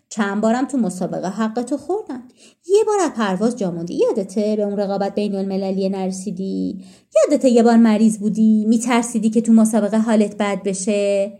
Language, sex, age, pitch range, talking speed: Persian, female, 30-49, 195-265 Hz, 155 wpm